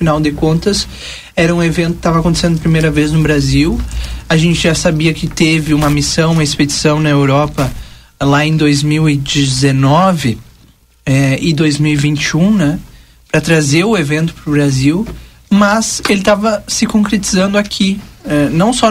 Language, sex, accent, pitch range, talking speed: Portuguese, male, Brazilian, 150-200 Hz, 155 wpm